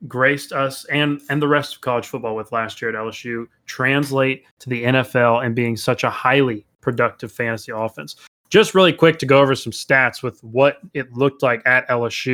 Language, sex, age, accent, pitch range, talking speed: English, male, 20-39, American, 120-145 Hz, 200 wpm